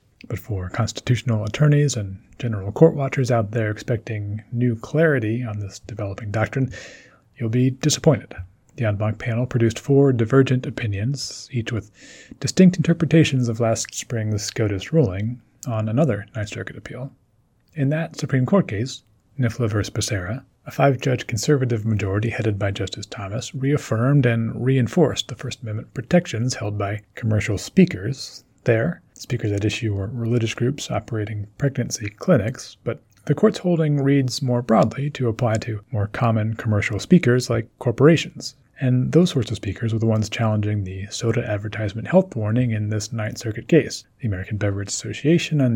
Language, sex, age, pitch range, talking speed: English, male, 30-49, 105-130 Hz, 155 wpm